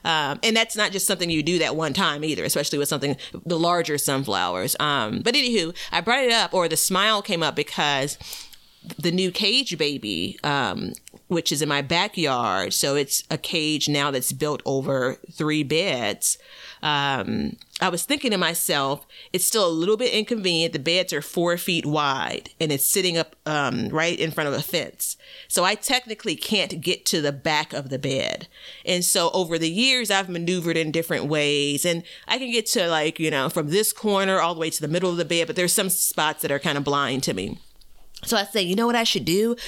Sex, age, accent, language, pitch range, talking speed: female, 40-59, American, English, 150-190 Hz, 215 wpm